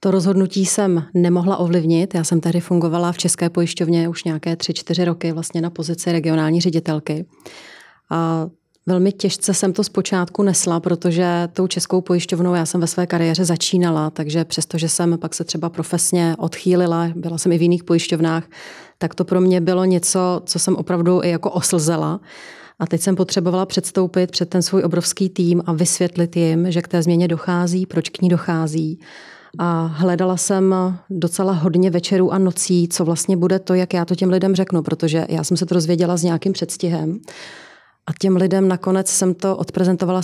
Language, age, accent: Czech, 30-49, native